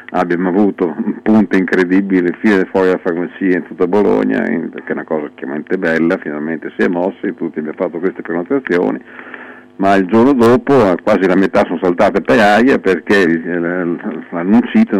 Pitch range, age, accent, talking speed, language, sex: 90-100 Hz, 50-69, native, 165 wpm, Italian, male